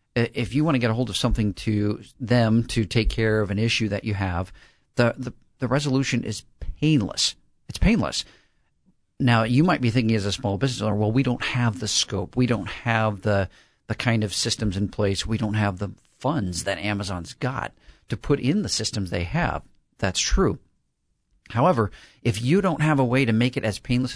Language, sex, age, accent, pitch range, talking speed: English, male, 50-69, American, 105-125 Hz, 205 wpm